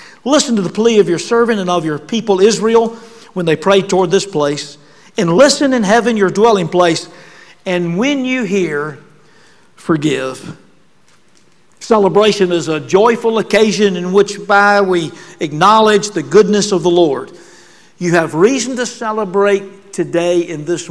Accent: American